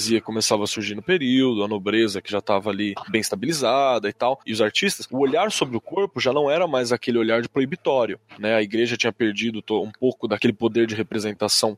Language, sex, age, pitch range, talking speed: Portuguese, male, 20-39, 115-150 Hz, 215 wpm